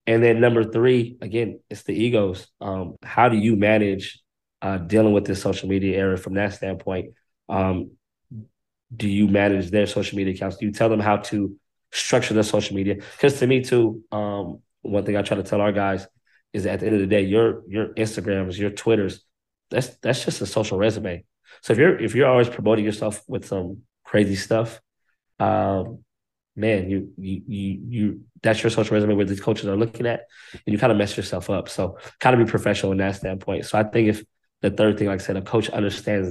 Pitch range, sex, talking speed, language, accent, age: 95-110 Hz, male, 210 wpm, English, American, 20-39